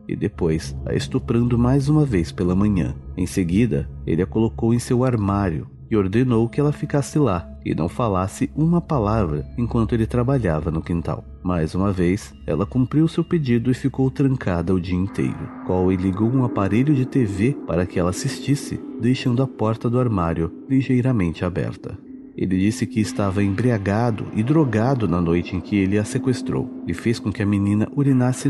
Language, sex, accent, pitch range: Portuguese, male, Brazilian, 90-130 Hz